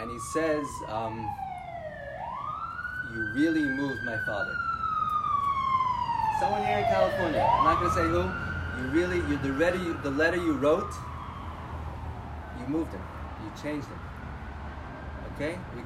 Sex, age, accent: male, 30-49, American